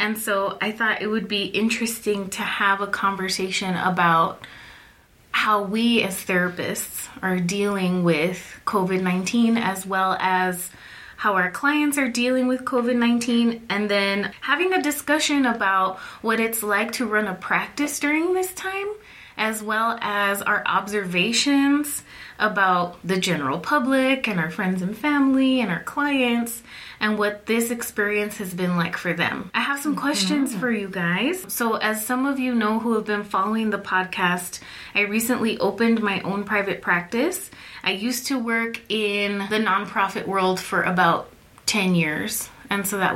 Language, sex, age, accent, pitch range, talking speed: English, female, 20-39, American, 190-240 Hz, 160 wpm